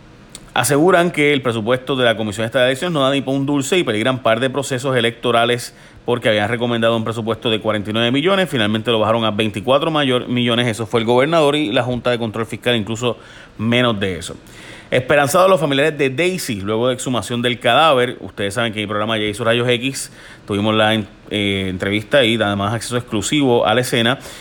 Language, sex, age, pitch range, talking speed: Spanish, male, 30-49, 110-130 Hz, 200 wpm